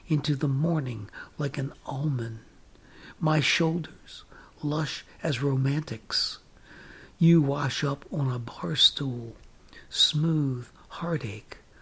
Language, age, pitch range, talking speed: English, 60-79, 135-160 Hz, 100 wpm